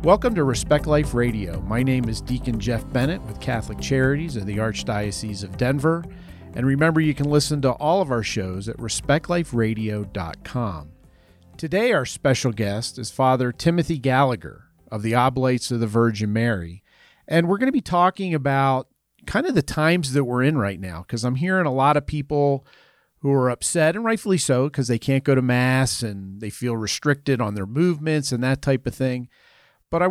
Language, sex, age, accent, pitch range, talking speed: English, male, 40-59, American, 120-150 Hz, 190 wpm